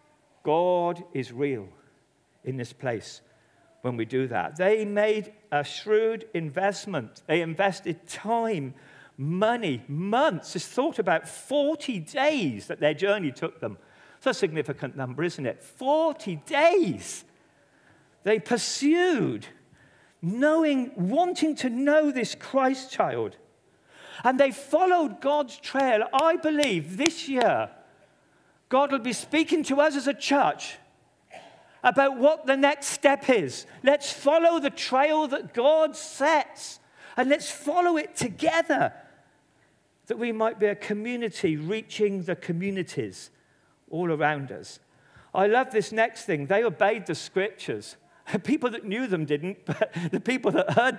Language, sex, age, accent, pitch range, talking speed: English, male, 50-69, British, 180-290 Hz, 135 wpm